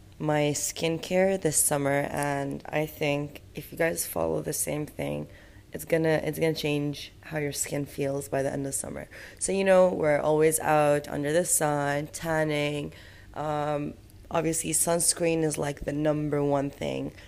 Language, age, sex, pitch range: English, 20-39, female, 140-160 Hz